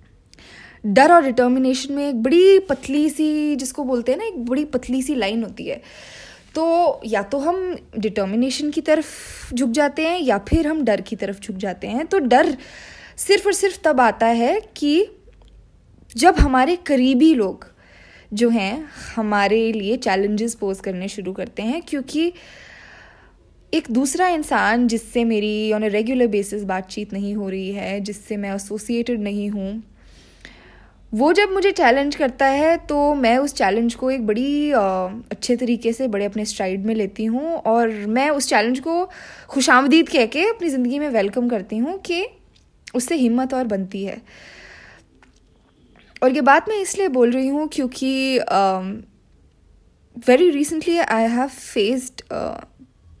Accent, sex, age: native, female, 20-39